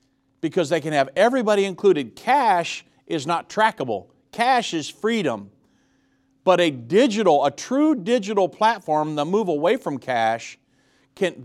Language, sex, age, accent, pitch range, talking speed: English, male, 50-69, American, 135-195 Hz, 135 wpm